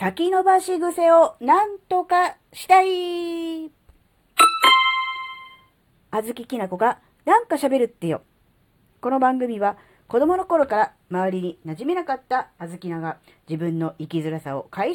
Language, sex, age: Japanese, female, 40-59